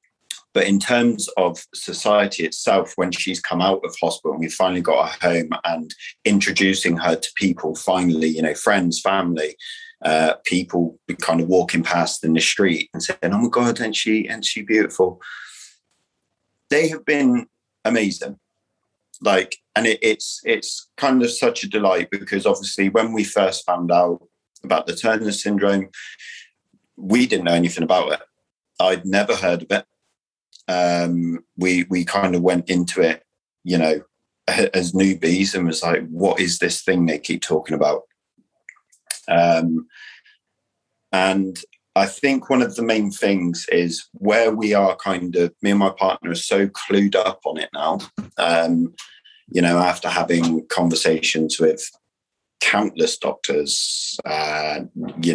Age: 40-59